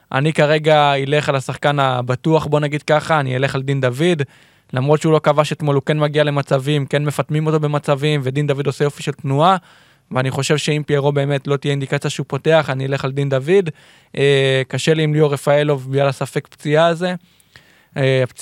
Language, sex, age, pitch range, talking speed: Hebrew, male, 20-39, 140-160 Hz, 185 wpm